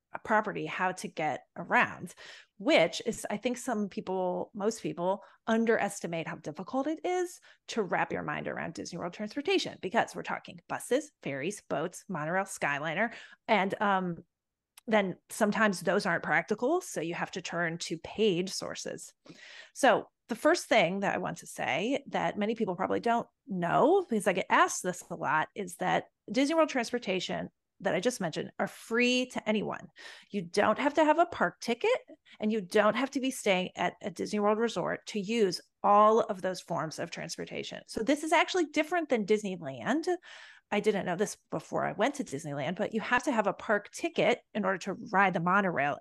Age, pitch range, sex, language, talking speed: 30-49, 185-235 Hz, female, English, 185 wpm